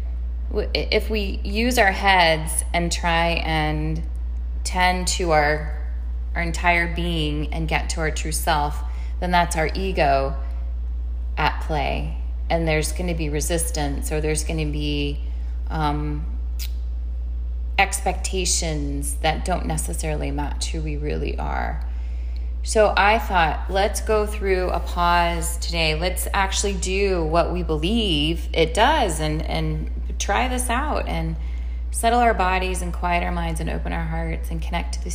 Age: 20-39